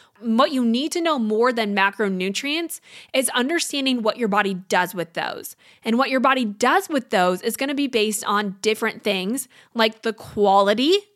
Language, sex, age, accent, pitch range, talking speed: English, female, 20-39, American, 220-280 Hz, 175 wpm